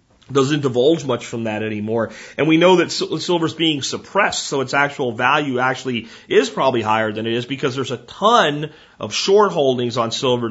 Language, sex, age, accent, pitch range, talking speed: English, male, 40-59, American, 125-170 Hz, 195 wpm